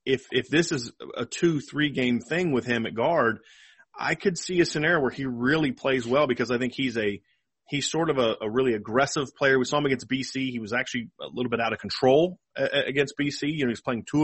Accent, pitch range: American, 120-145 Hz